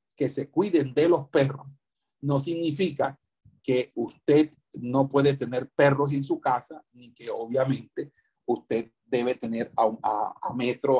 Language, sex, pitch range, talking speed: Spanish, male, 125-150 Hz, 145 wpm